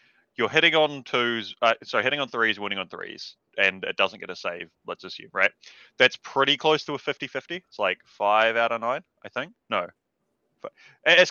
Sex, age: male, 20-39